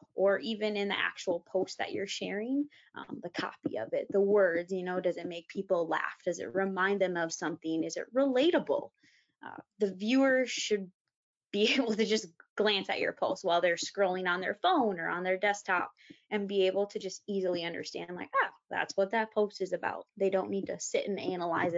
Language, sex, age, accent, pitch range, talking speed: English, female, 20-39, American, 180-230 Hz, 210 wpm